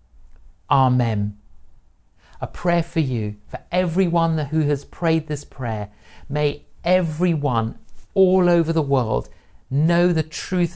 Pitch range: 100-155 Hz